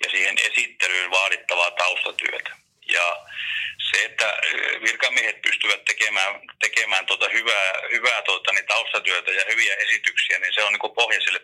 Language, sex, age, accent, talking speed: Finnish, male, 40-59, native, 120 wpm